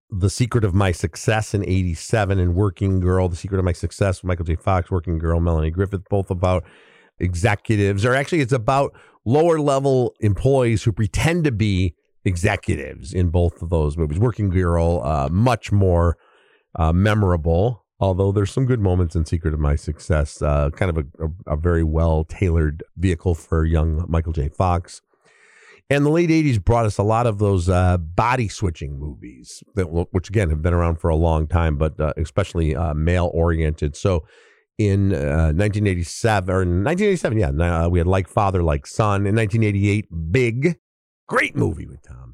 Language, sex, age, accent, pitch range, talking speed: English, male, 50-69, American, 80-110 Hz, 180 wpm